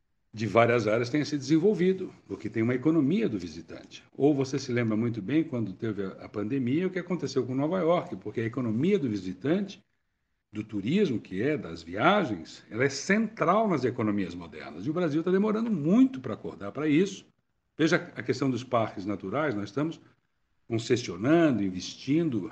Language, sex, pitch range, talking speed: Portuguese, male, 110-175 Hz, 175 wpm